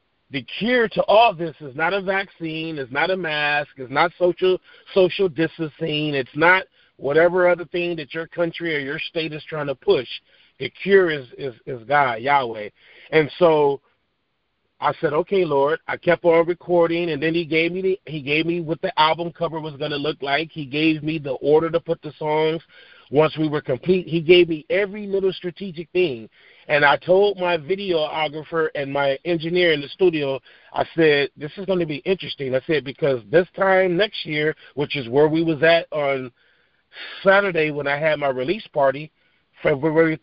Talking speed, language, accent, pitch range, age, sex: 190 wpm, English, American, 145-175 Hz, 40-59, male